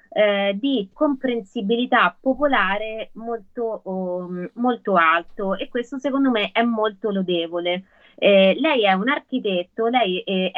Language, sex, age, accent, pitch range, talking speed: Italian, female, 20-39, native, 190-245 Hz, 120 wpm